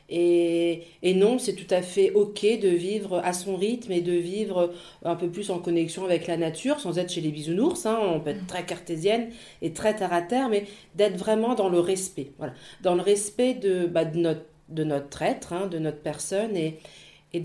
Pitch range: 170-195 Hz